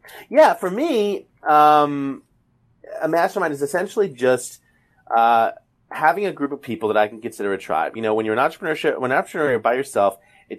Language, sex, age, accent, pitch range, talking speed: English, male, 30-49, American, 110-150 Hz, 175 wpm